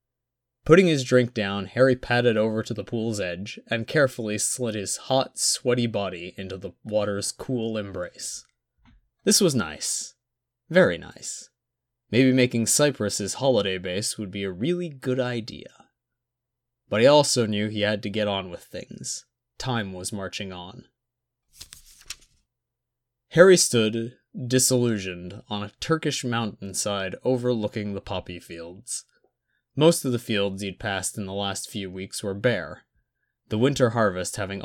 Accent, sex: American, male